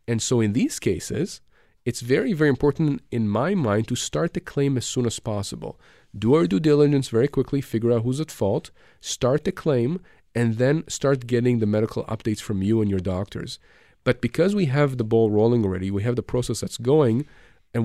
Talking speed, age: 205 wpm, 40-59